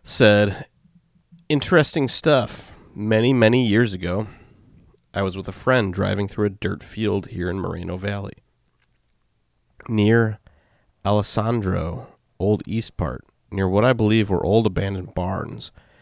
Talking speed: 125 wpm